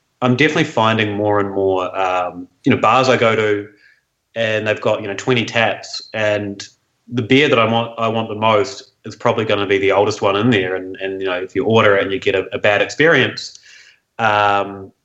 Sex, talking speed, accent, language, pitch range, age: male, 220 wpm, Australian, English, 100-125 Hz, 30-49